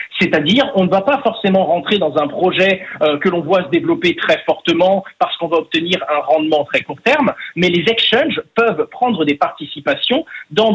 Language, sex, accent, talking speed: French, male, French, 195 wpm